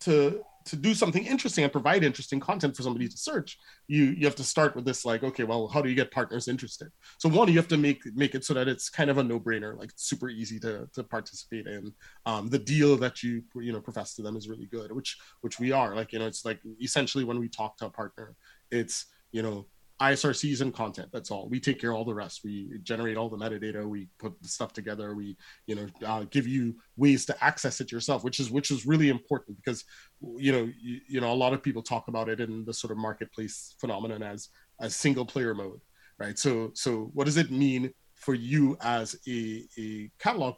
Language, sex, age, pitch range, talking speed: English, male, 20-39, 110-140 Hz, 235 wpm